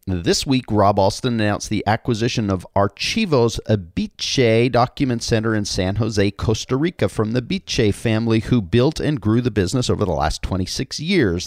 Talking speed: 165 wpm